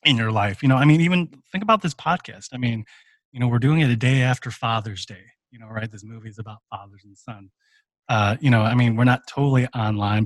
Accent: American